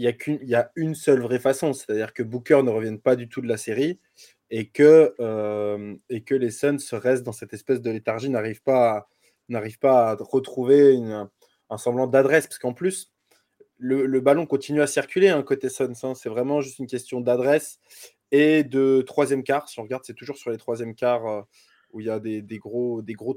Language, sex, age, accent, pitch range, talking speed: French, male, 20-39, French, 115-145 Hz, 200 wpm